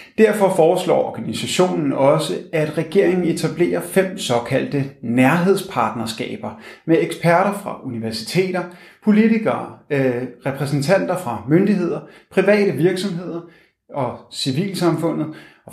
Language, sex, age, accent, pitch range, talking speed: Danish, male, 30-49, native, 130-175 Hz, 90 wpm